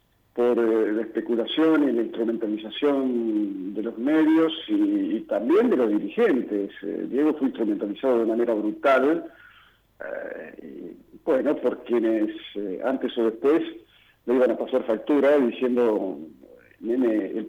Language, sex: Spanish, male